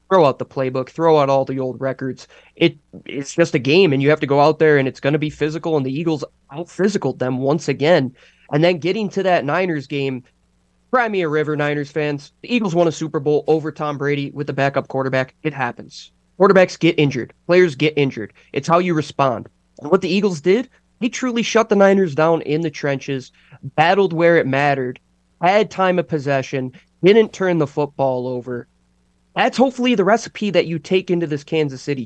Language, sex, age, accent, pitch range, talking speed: English, male, 20-39, American, 135-185 Hz, 205 wpm